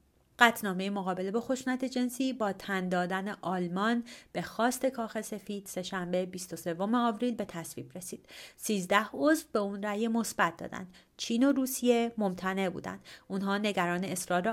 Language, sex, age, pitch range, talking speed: Persian, female, 30-49, 180-220 Hz, 135 wpm